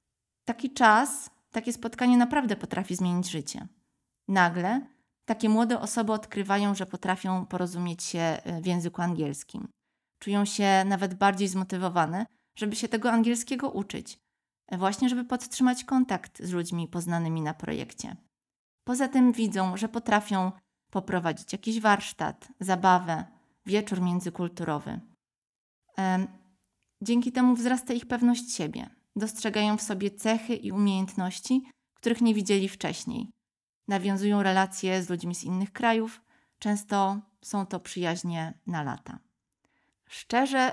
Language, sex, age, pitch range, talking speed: Polish, female, 20-39, 185-230 Hz, 120 wpm